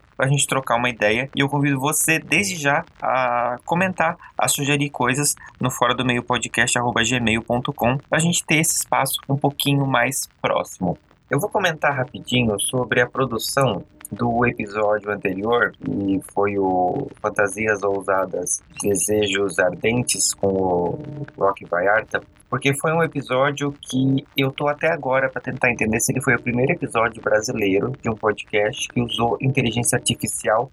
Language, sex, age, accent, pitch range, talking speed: Portuguese, male, 20-39, Brazilian, 110-140 Hz, 160 wpm